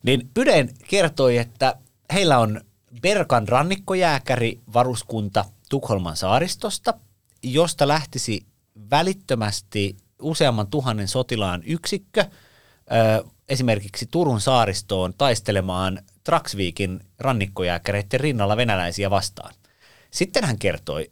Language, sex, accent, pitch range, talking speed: Finnish, male, native, 100-130 Hz, 80 wpm